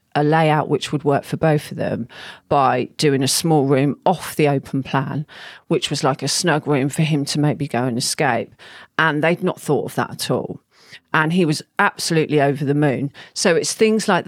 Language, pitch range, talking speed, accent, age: English, 145-170 Hz, 210 wpm, British, 40-59